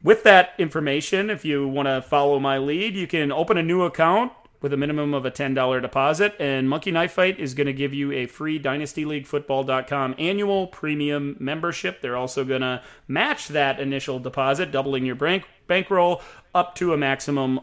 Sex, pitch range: male, 130-160 Hz